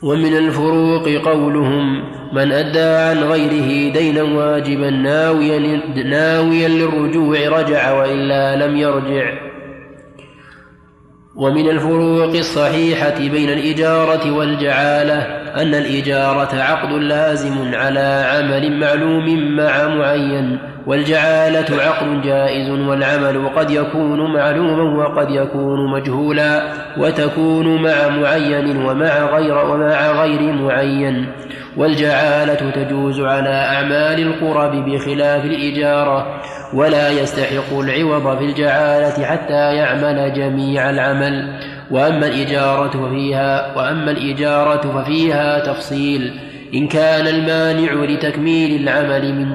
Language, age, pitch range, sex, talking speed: Arabic, 20-39, 140-155 Hz, male, 95 wpm